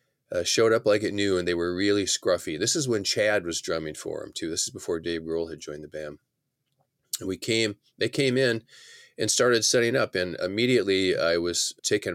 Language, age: English, 30-49